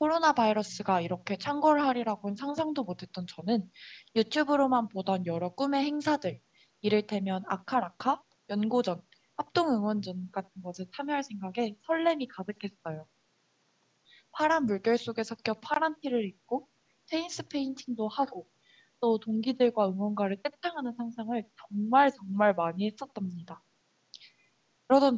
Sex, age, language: female, 20-39, Korean